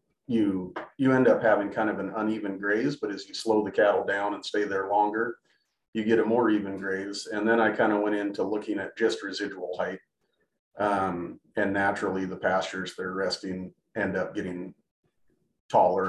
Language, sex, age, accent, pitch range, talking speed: English, male, 40-59, American, 95-115 Hz, 190 wpm